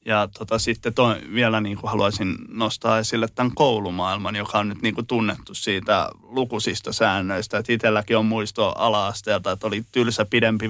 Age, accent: 20-39, native